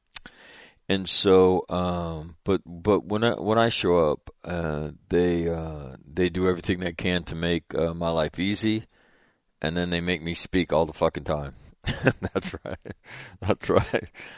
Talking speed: 165 wpm